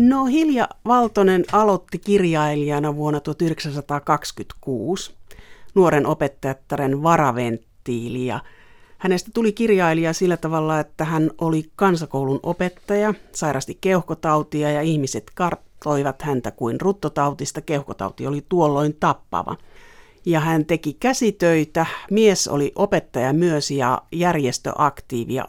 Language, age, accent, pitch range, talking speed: Finnish, 60-79, native, 140-185 Hz, 100 wpm